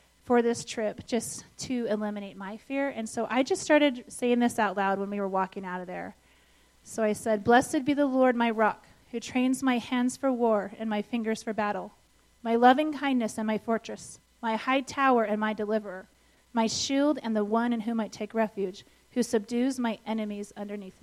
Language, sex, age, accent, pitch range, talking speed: English, female, 30-49, American, 210-255 Hz, 205 wpm